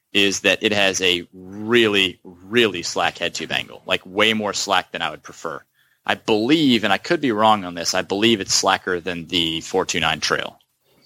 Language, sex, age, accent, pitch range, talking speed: English, male, 20-39, American, 90-115 Hz, 195 wpm